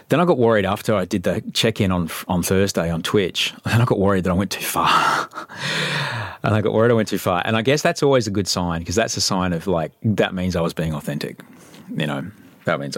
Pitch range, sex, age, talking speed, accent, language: 80-110 Hz, male, 30-49, 255 wpm, Australian, English